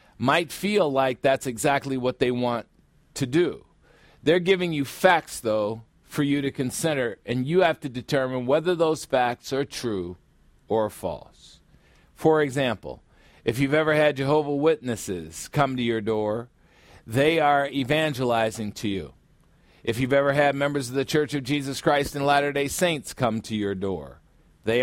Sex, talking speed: male, 160 wpm